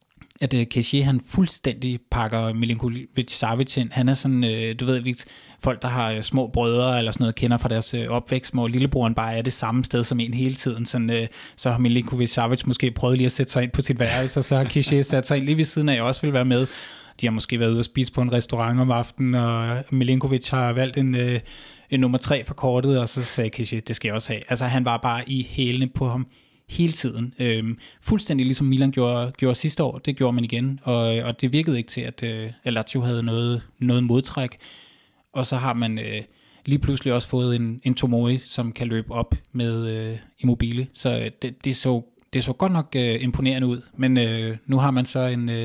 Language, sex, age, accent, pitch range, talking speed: Danish, male, 20-39, native, 120-130 Hz, 225 wpm